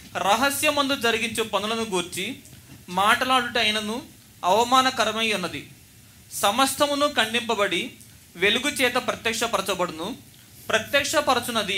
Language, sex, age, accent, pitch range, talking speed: Telugu, male, 30-49, native, 200-265 Hz, 65 wpm